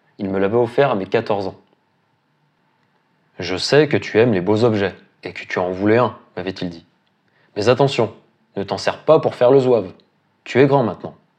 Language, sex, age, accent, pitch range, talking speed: French, male, 20-39, French, 110-140 Hz, 200 wpm